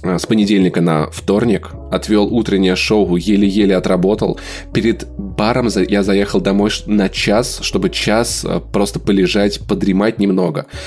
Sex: male